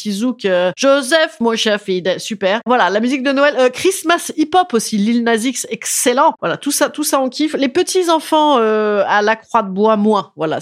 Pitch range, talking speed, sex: 190-275 Hz, 200 wpm, female